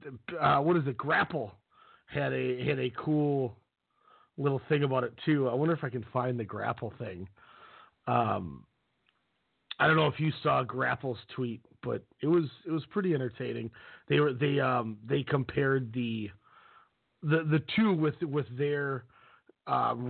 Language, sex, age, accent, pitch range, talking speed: English, male, 40-59, American, 130-160 Hz, 160 wpm